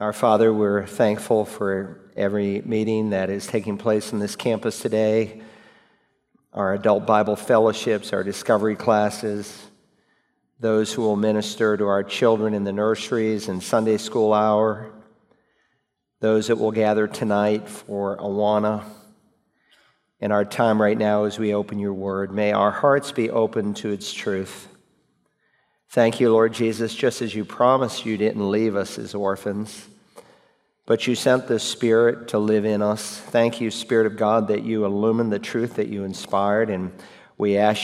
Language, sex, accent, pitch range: English, male, American, 100-110 Hz